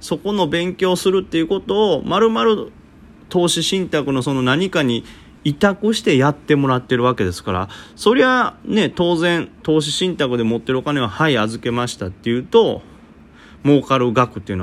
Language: Japanese